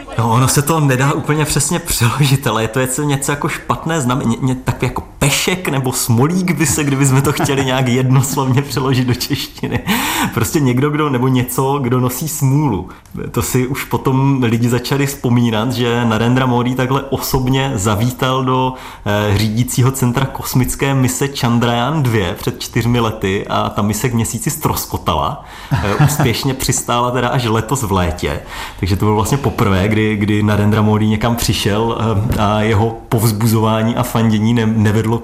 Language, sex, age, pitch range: Czech, male, 30-49, 105-135 Hz